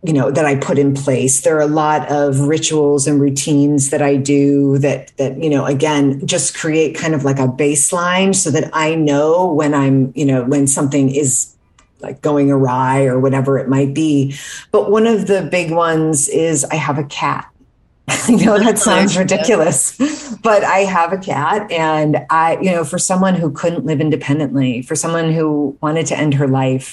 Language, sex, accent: English, female, American